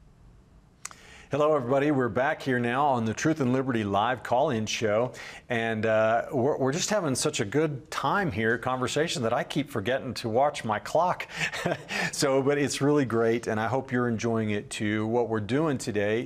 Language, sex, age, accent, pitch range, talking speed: English, male, 40-59, American, 110-135 Hz, 185 wpm